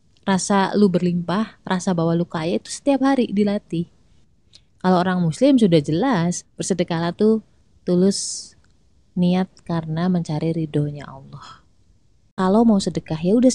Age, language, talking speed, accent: 20-39, Indonesian, 135 wpm, native